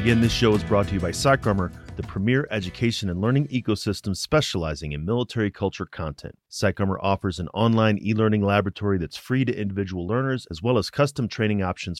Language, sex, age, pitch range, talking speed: English, male, 30-49, 85-115 Hz, 190 wpm